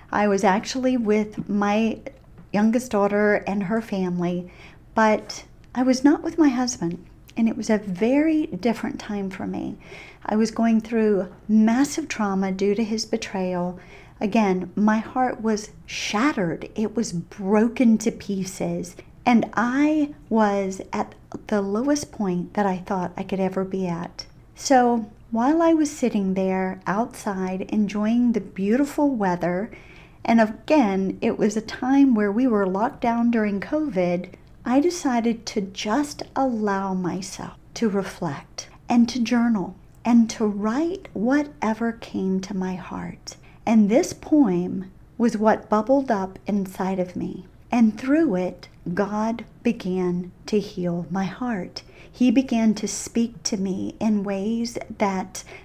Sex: female